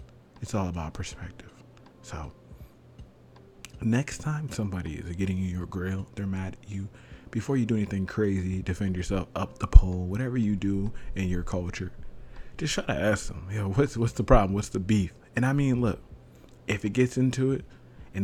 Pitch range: 90-115 Hz